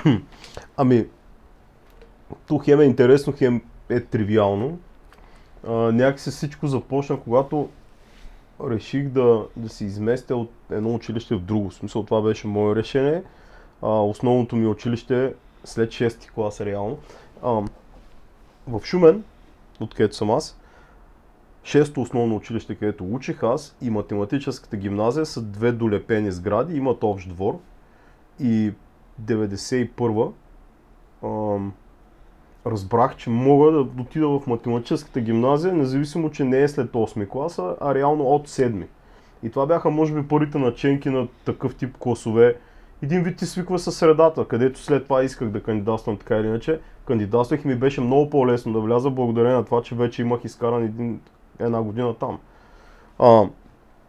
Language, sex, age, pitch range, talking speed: Bulgarian, male, 30-49, 110-140 Hz, 140 wpm